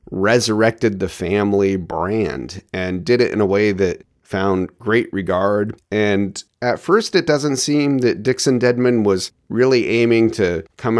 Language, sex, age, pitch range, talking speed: English, male, 30-49, 100-140 Hz, 155 wpm